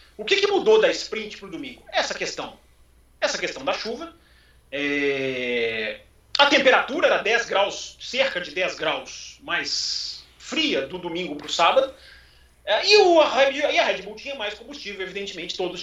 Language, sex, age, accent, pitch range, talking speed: Portuguese, male, 40-59, Brazilian, 185-295 Hz, 160 wpm